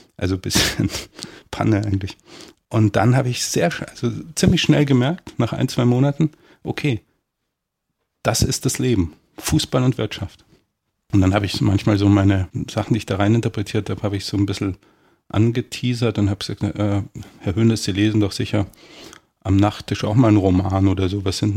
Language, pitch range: German, 100-120 Hz